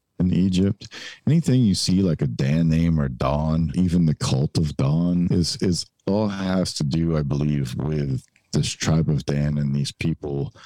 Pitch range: 70-85 Hz